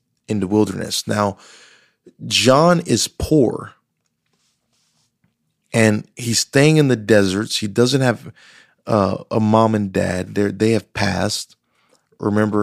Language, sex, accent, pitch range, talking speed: English, male, American, 100-115 Hz, 125 wpm